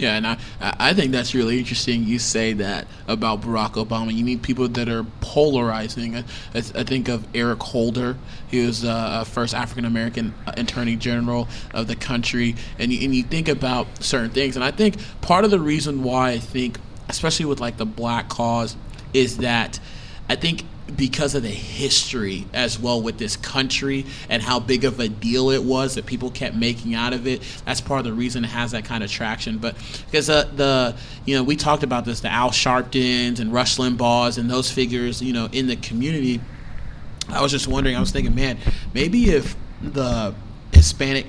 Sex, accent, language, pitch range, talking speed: male, American, English, 115-135 Hz, 200 wpm